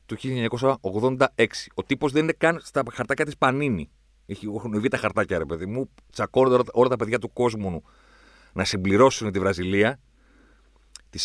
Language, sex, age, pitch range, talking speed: Greek, male, 40-59, 85-135 Hz, 160 wpm